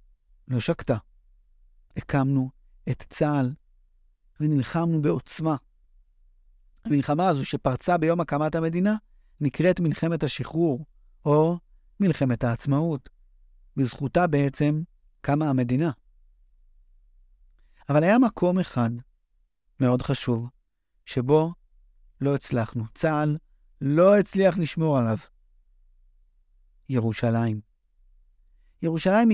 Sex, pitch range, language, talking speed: male, 100-155 Hz, Hebrew, 80 wpm